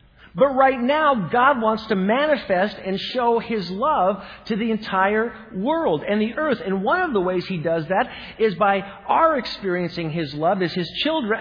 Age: 50-69